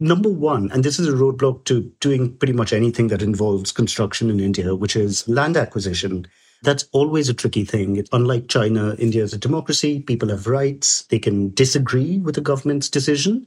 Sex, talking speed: male, 185 wpm